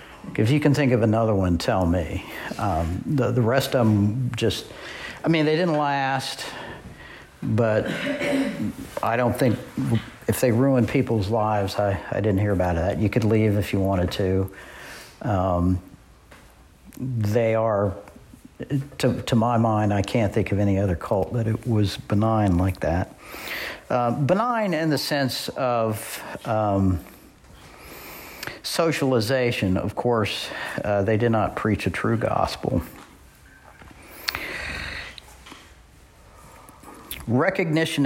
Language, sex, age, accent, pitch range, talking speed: English, male, 60-79, American, 100-130 Hz, 130 wpm